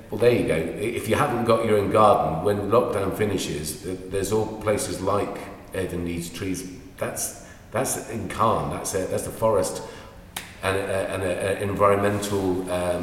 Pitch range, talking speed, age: 85-105 Hz, 145 wpm, 40-59